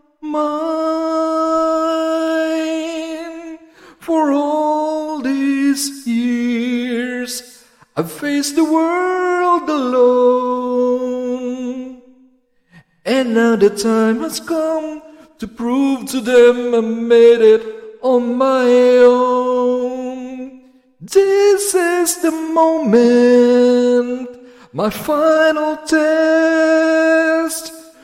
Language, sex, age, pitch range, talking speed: Filipino, male, 50-69, 245-320 Hz, 70 wpm